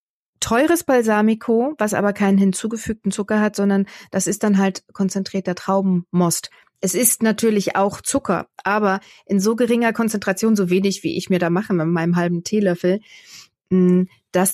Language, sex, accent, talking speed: German, female, German, 155 wpm